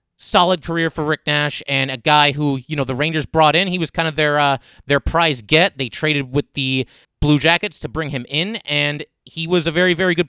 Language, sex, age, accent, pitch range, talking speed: English, male, 30-49, American, 140-180 Hz, 240 wpm